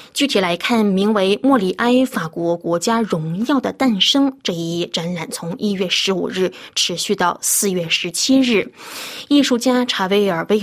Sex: female